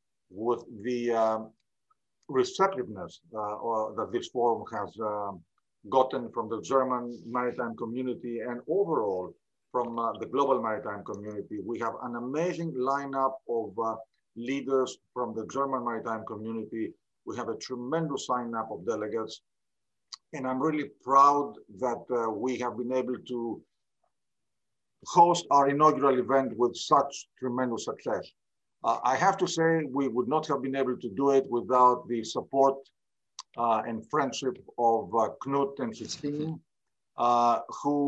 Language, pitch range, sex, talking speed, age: English, 115-140 Hz, male, 145 wpm, 50-69